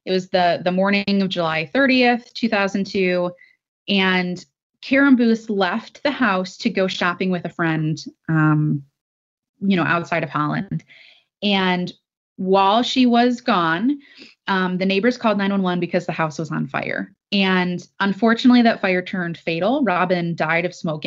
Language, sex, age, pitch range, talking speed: English, female, 20-39, 175-220 Hz, 165 wpm